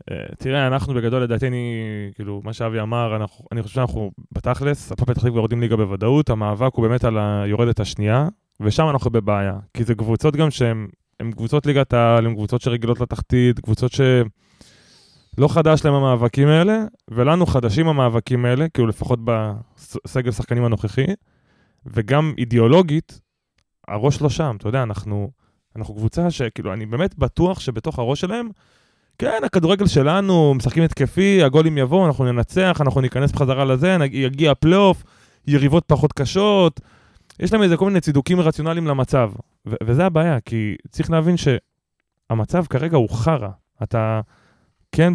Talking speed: 140 wpm